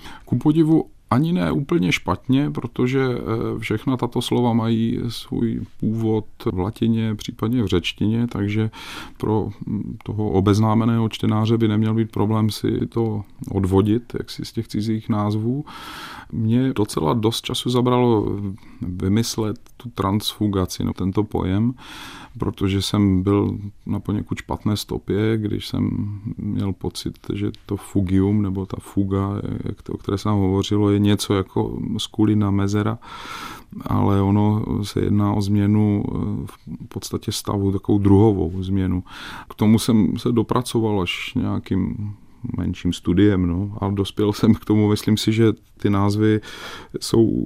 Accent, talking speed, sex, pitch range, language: native, 135 wpm, male, 95-115 Hz, Czech